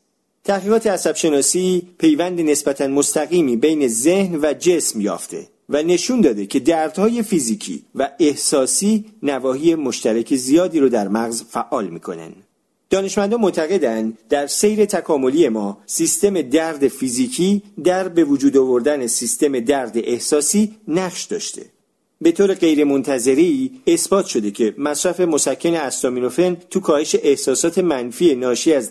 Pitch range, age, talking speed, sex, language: 135-190 Hz, 40-59, 125 wpm, male, Persian